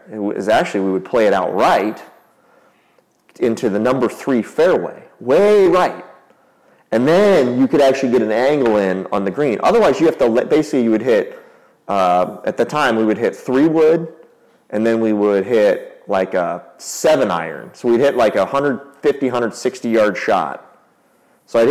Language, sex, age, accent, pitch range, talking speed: English, male, 30-49, American, 105-135 Hz, 175 wpm